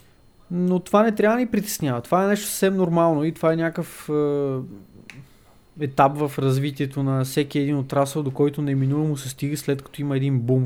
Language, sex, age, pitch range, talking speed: Bulgarian, male, 20-39, 130-160 Hz, 195 wpm